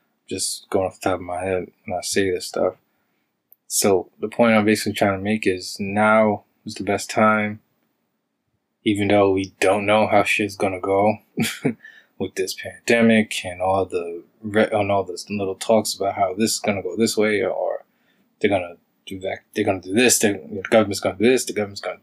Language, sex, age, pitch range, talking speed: English, male, 20-39, 95-110 Hz, 205 wpm